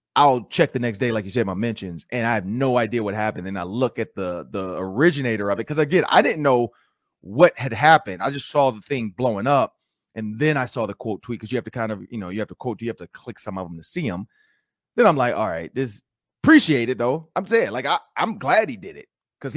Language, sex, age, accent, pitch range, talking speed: English, male, 30-49, American, 115-190 Hz, 275 wpm